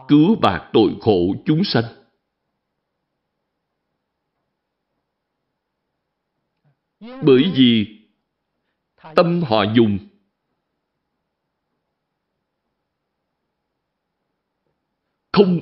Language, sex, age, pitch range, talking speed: Vietnamese, male, 60-79, 120-180 Hz, 45 wpm